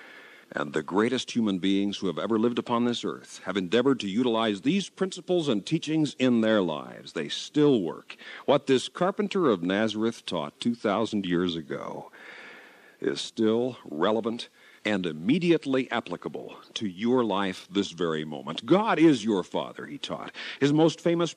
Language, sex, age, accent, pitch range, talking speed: English, male, 50-69, American, 100-125 Hz, 155 wpm